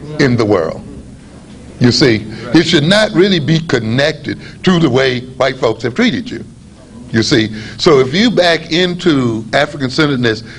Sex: male